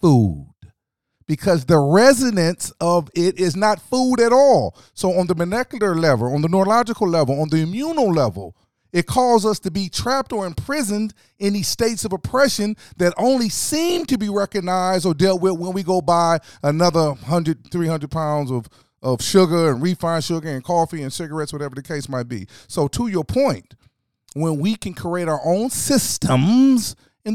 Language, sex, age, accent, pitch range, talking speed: English, male, 40-59, American, 145-205 Hz, 180 wpm